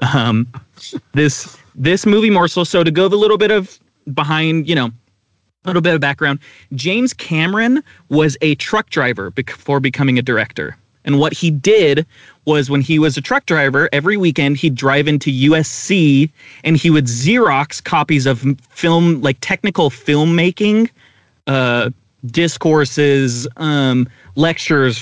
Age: 30-49